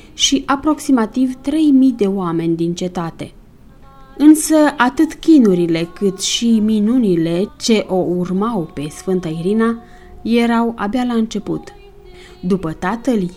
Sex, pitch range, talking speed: female, 170-230 Hz, 110 wpm